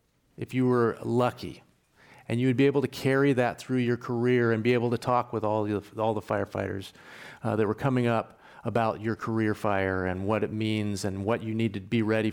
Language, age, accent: English, 40-59, American